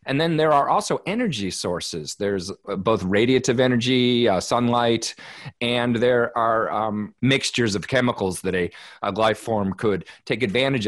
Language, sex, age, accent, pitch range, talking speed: English, male, 40-59, American, 100-120 Hz, 155 wpm